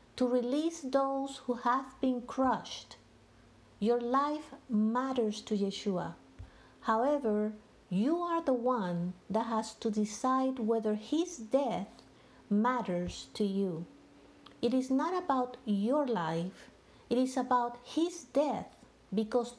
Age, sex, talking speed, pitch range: 50-69, female, 120 wpm, 215-265 Hz